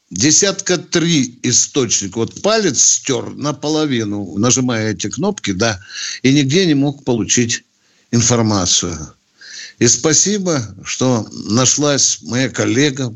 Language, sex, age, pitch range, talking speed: Russian, male, 60-79, 110-150 Hz, 110 wpm